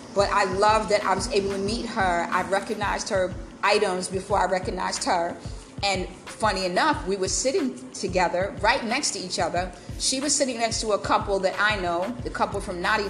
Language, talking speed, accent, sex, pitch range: English, 200 wpm, American, female, 175-205 Hz